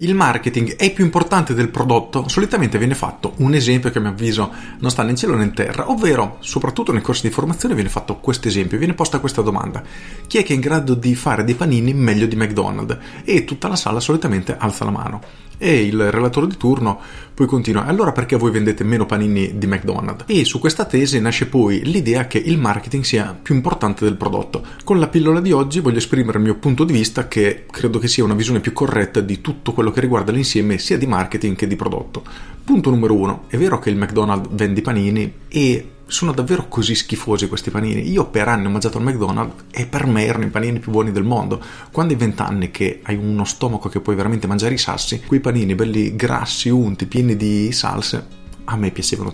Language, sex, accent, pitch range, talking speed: Italian, male, native, 105-135 Hz, 215 wpm